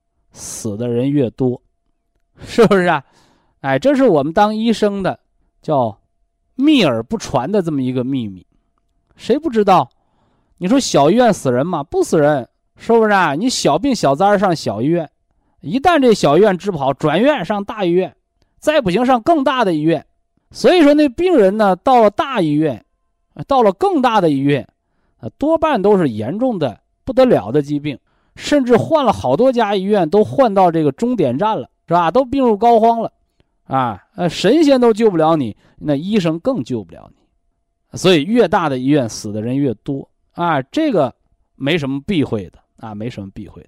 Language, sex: Chinese, male